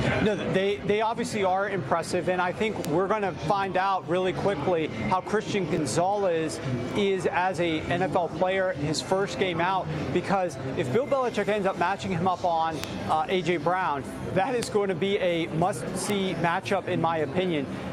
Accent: American